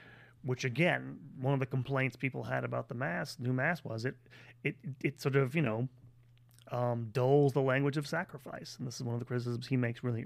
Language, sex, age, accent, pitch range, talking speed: English, male, 30-49, American, 120-140 Hz, 215 wpm